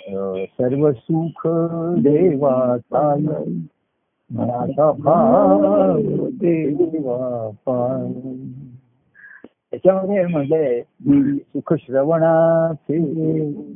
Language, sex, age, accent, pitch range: Marathi, male, 60-79, native, 135-175 Hz